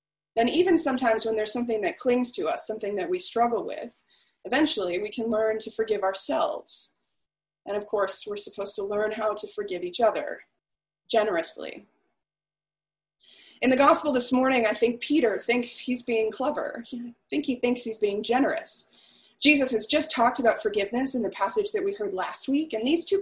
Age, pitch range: 20-39, 220-295 Hz